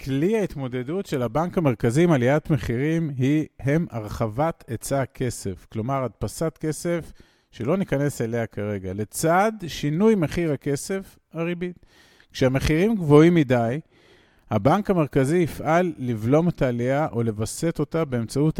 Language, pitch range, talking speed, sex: Hebrew, 120-165 Hz, 125 wpm, male